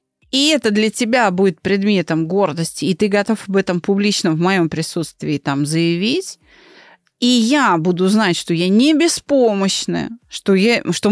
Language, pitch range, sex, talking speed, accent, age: Russian, 165-220 Hz, female, 150 wpm, native, 30-49